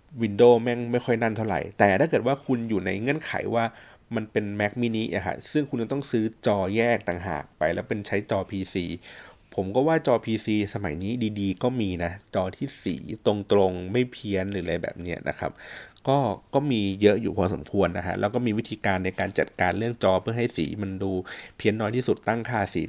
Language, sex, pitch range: Thai, male, 95-120 Hz